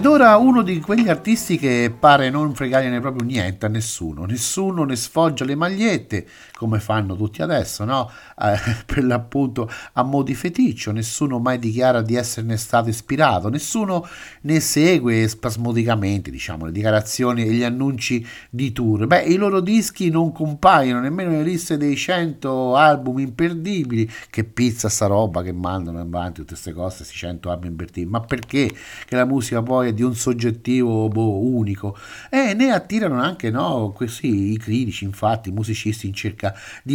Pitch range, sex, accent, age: 110-155 Hz, male, native, 50-69